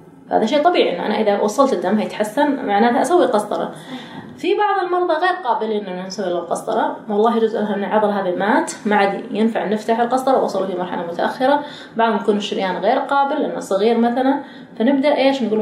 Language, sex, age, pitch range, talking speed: Arabic, female, 20-39, 205-265 Hz, 180 wpm